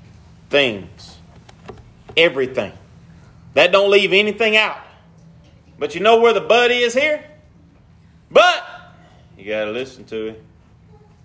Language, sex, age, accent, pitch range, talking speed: English, male, 30-49, American, 165-265 Hz, 110 wpm